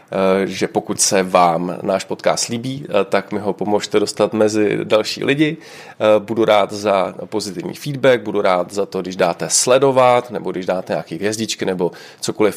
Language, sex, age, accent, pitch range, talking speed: Czech, male, 30-49, native, 105-120 Hz, 160 wpm